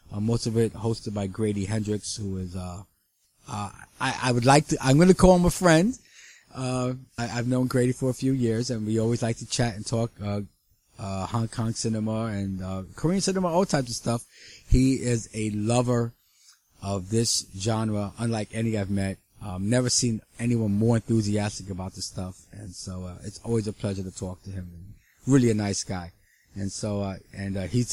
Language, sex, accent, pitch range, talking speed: English, male, American, 100-125 Hz, 200 wpm